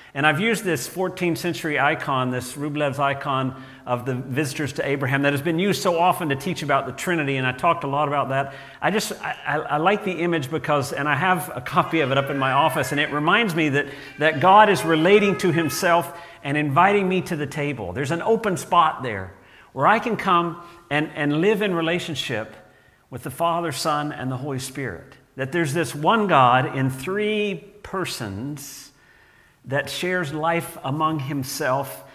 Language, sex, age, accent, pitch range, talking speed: English, male, 50-69, American, 140-175 Hz, 195 wpm